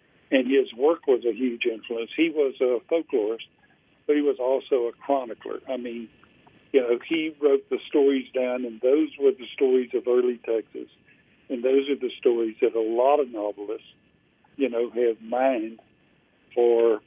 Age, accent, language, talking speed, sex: 50-69, American, English, 170 wpm, male